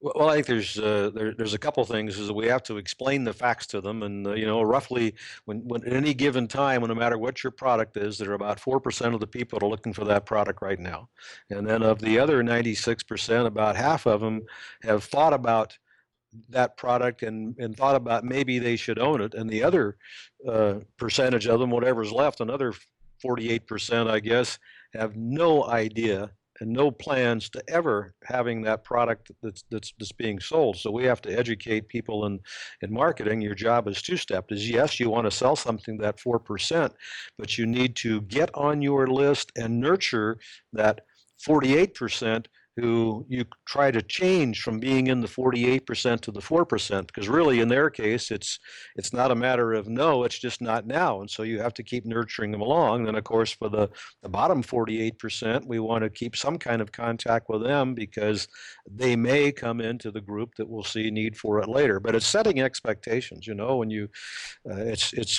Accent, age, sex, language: American, 60-79, male, English